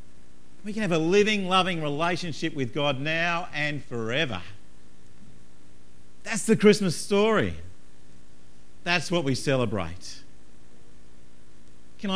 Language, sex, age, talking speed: English, male, 50-69, 105 wpm